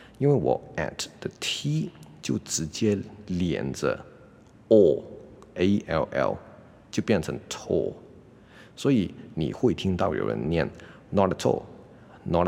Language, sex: Chinese, male